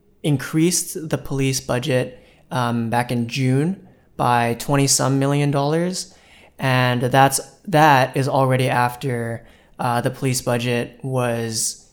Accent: American